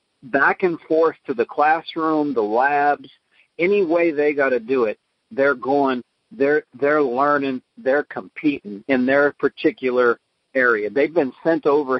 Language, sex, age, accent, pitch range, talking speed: English, male, 50-69, American, 135-175 Hz, 150 wpm